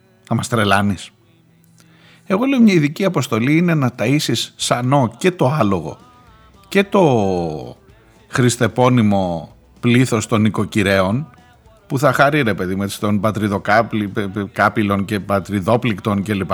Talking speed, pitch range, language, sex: 115 wpm, 100-135 Hz, Greek, male